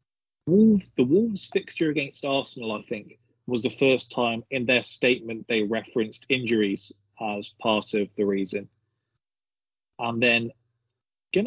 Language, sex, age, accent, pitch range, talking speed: English, male, 30-49, British, 110-125 Hz, 135 wpm